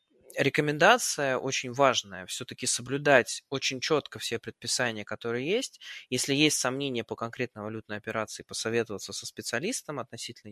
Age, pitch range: 20-39, 115-155 Hz